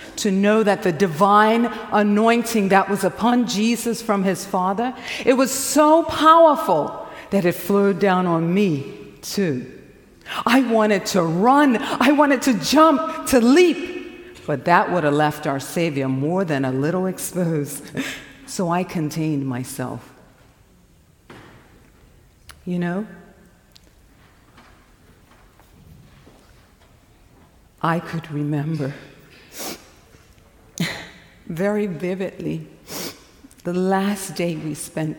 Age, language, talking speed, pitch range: 50-69, English, 105 wpm, 155-245 Hz